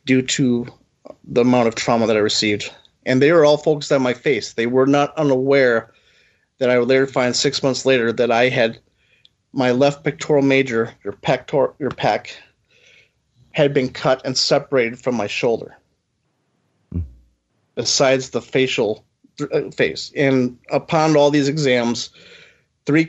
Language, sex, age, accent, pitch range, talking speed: English, male, 30-49, American, 120-140 Hz, 150 wpm